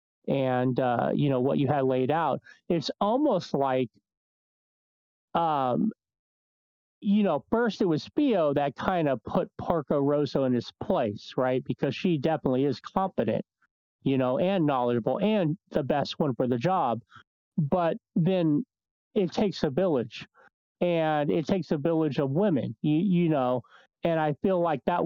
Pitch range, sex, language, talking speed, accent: 135-190 Hz, male, English, 160 wpm, American